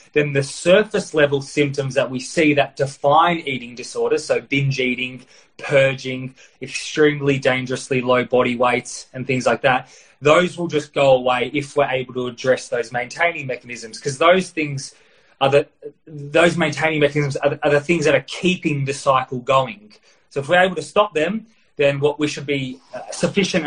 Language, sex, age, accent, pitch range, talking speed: English, male, 20-39, Australian, 135-160 Hz, 175 wpm